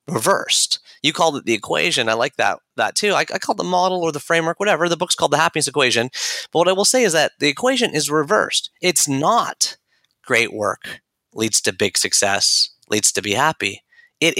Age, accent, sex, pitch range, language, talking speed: 30-49, American, male, 125-195 Hz, English, 215 wpm